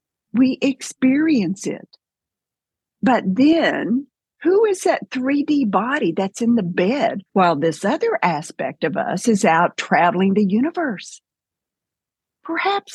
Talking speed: 120 wpm